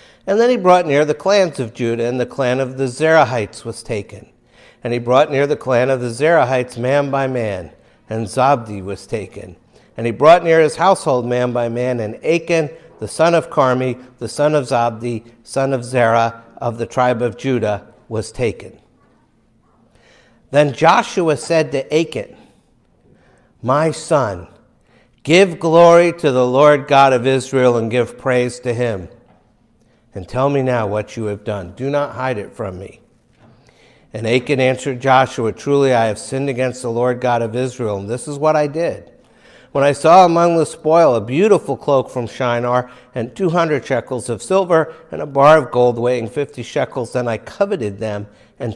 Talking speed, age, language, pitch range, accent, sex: 180 wpm, 60-79, English, 115-150 Hz, American, male